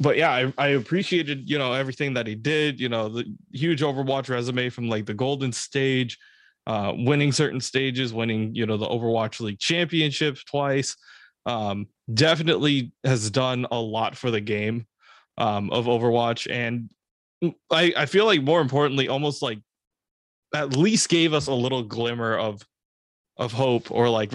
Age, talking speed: 20-39, 165 wpm